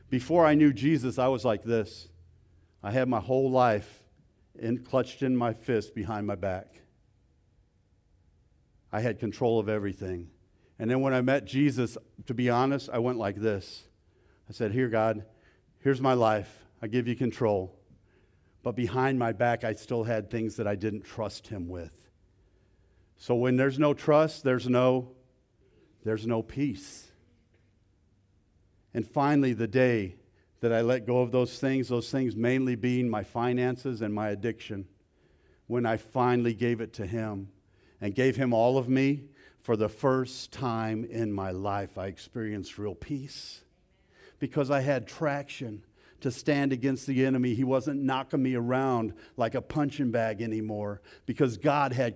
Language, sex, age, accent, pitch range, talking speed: English, male, 50-69, American, 105-130 Hz, 160 wpm